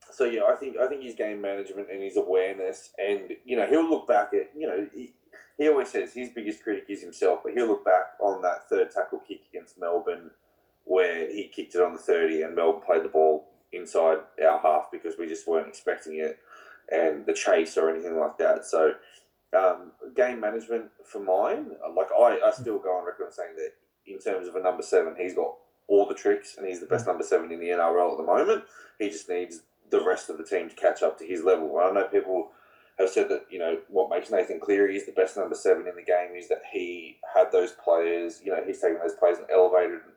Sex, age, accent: male, 20-39, Australian